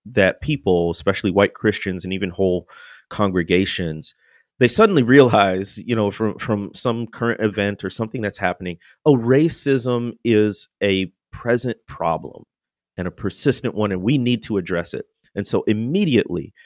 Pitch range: 100-125 Hz